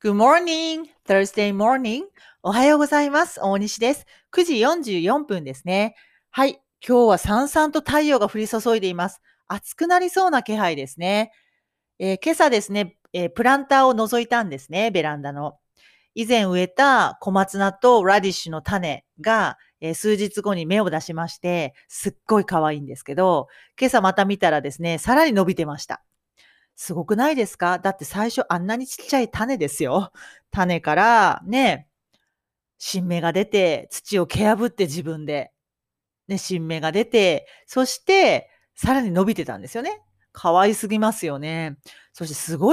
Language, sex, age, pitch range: Japanese, female, 40-59, 170-245 Hz